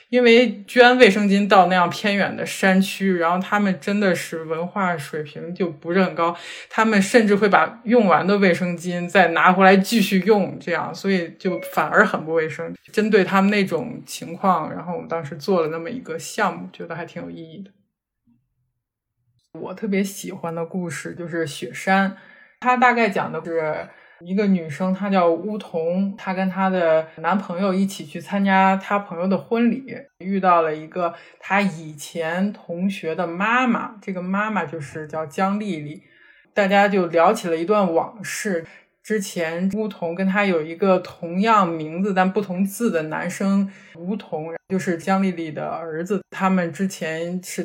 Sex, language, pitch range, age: male, Chinese, 165-205 Hz, 20-39